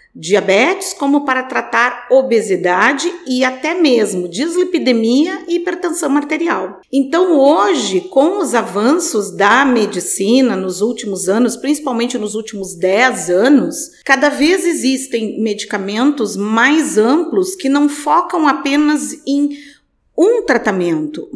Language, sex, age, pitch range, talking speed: Portuguese, female, 40-59, 210-310 Hz, 110 wpm